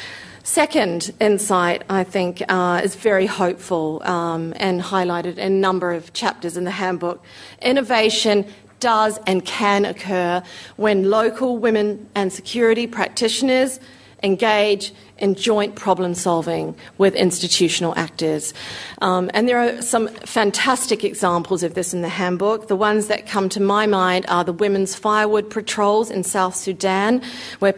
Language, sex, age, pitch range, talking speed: English, female, 40-59, 185-225 Hz, 145 wpm